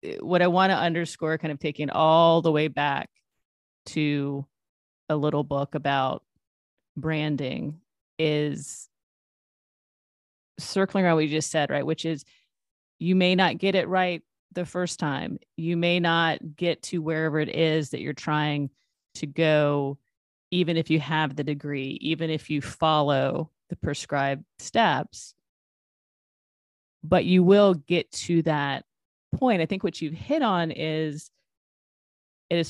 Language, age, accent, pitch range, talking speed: English, 30-49, American, 140-165 Hz, 145 wpm